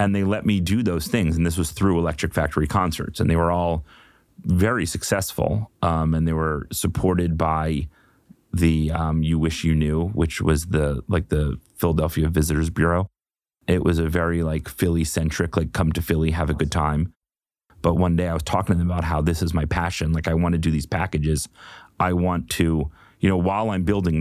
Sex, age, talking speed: male, 30-49, 205 wpm